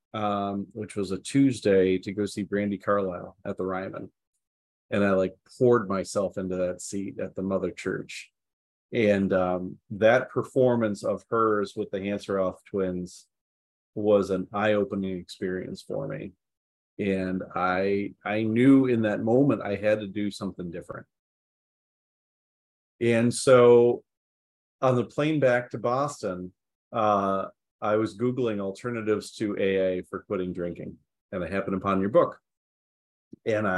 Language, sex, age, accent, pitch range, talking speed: English, male, 30-49, American, 95-110 Hz, 140 wpm